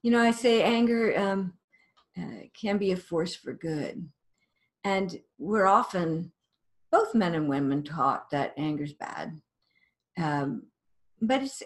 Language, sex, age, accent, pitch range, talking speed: English, female, 50-69, American, 170-225 Hz, 140 wpm